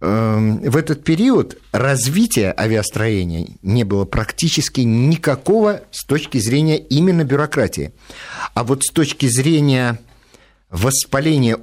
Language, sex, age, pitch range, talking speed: Russian, male, 50-69, 110-145 Hz, 105 wpm